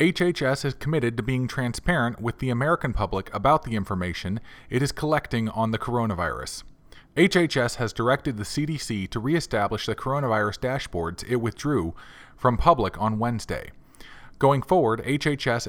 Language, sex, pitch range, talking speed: English, male, 110-140 Hz, 145 wpm